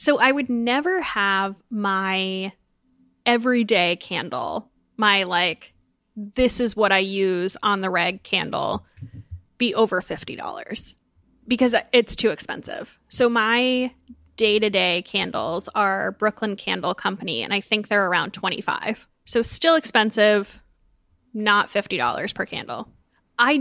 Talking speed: 120 wpm